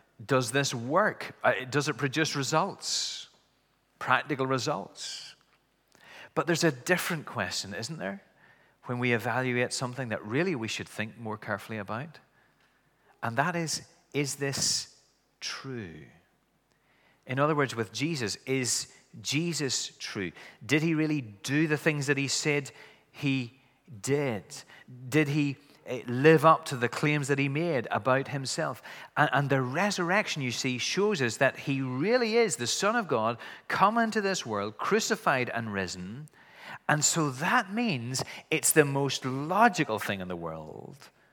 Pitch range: 115-155 Hz